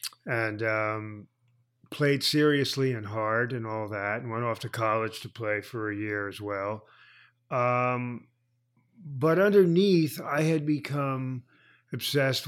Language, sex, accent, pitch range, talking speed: English, male, American, 110-130 Hz, 135 wpm